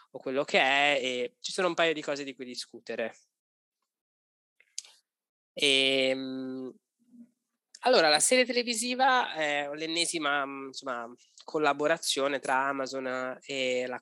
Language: Italian